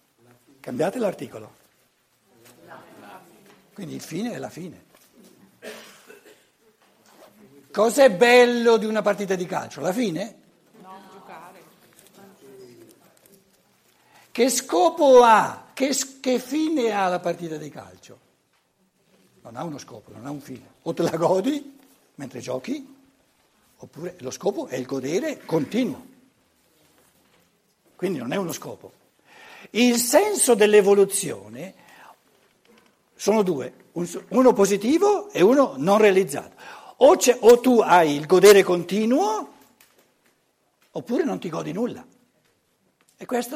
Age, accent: 60-79, native